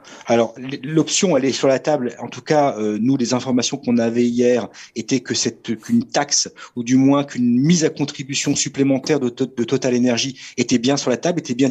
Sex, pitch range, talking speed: male, 125-155 Hz, 200 wpm